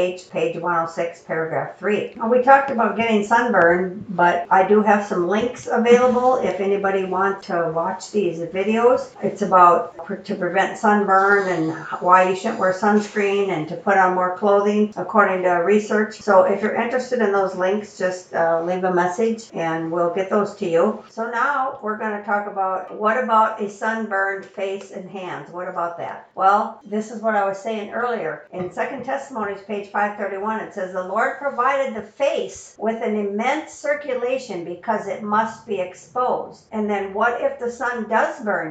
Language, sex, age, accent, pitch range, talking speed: English, female, 60-79, American, 185-225 Hz, 175 wpm